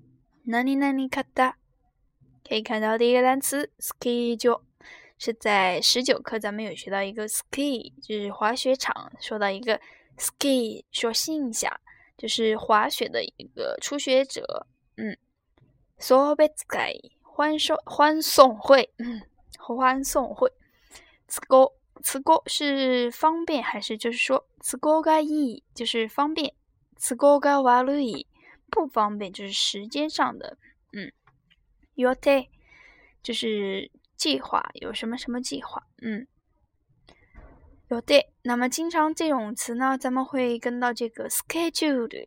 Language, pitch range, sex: Chinese, 230-285 Hz, female